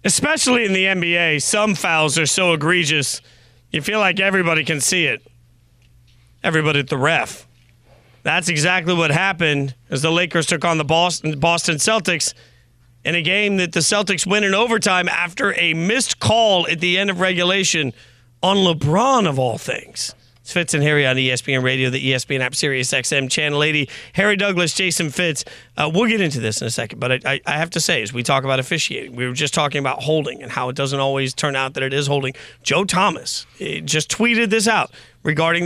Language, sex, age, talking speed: English, male, 40-59, 195 wpm